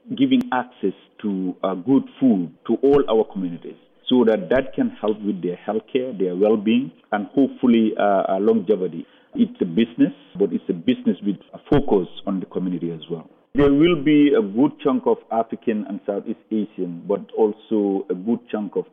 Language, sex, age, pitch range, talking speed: English, male, 50-69, 95-155 Hz, 180 wpm